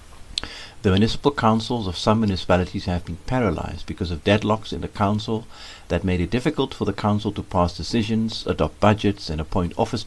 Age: 60-79